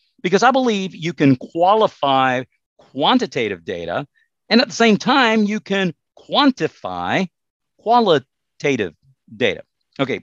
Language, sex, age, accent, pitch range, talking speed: English, male, 50-69, American, 130-210 Hz, 110 wpm